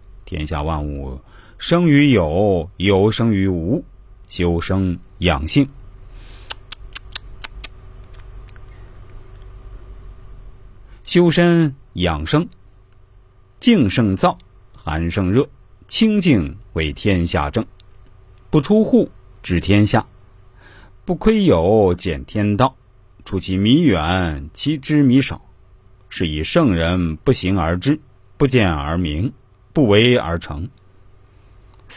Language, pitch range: Chinese, 95-120 Hz